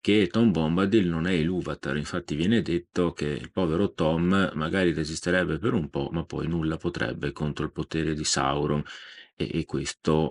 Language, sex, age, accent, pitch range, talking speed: Italian, male, 40-59, native, 75-95 Hz, 180 wpm